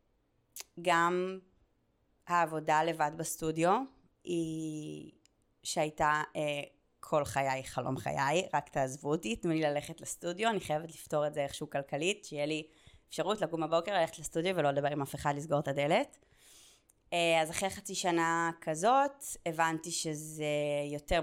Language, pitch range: Hebrew, 145-170 Hz